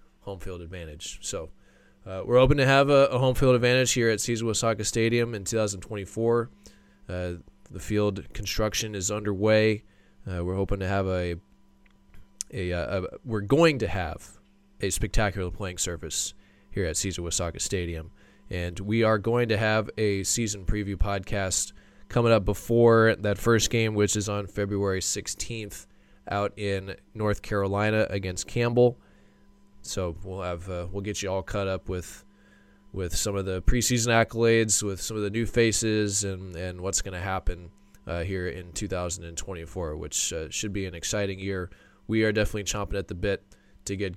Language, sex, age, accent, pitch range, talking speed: English, male, 20-39, American, 90-110 Hz, 170 wpm